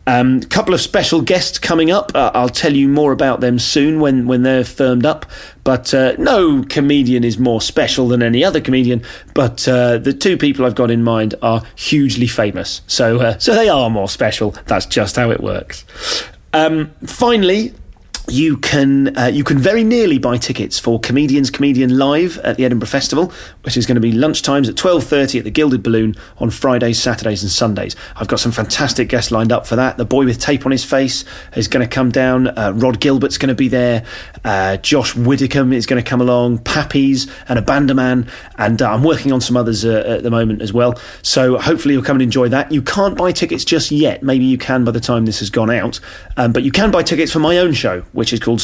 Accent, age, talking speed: British, 30-49, 225 wpm